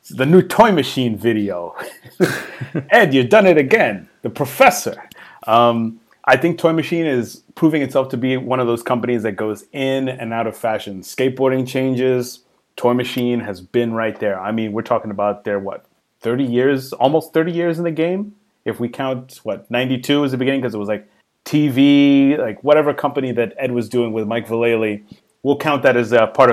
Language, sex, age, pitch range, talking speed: English, male, 30-49, 110-135 Hz, 190 wpm